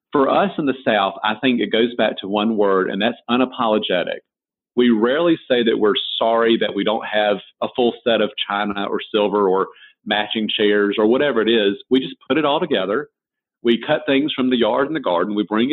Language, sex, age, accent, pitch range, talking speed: English, male, 40-59, American, 105-130 Hz, 220 wpm